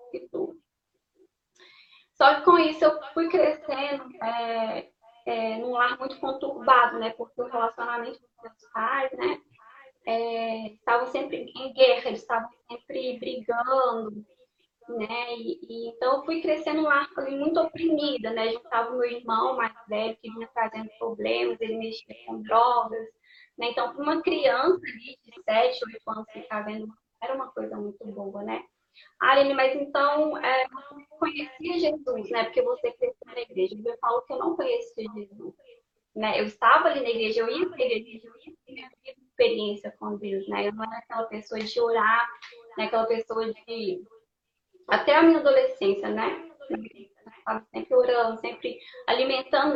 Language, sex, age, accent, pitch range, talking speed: Portuguese, female, 10-29, Brazilian, 225-305 Hz, 165 wpm